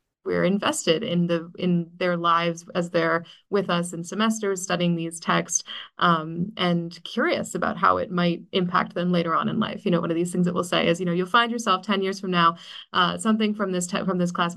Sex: female